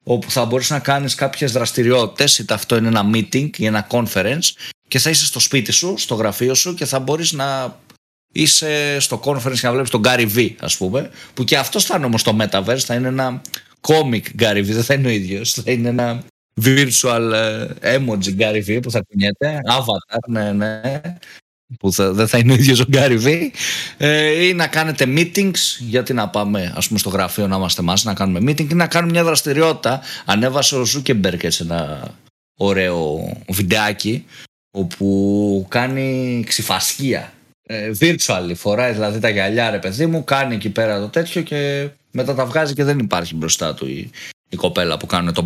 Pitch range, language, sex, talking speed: 105-145 Hz, Greek, male, 185 wpm